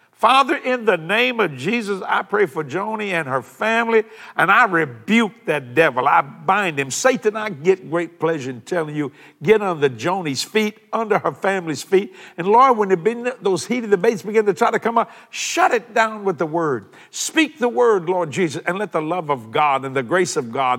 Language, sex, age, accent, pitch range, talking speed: English, male, 60-79, American, 145-210 Hz, 205 wpm